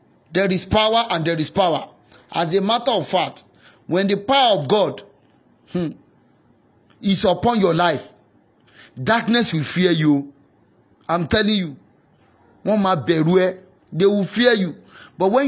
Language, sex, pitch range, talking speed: English, male, 170-230 Hz, 135 wpm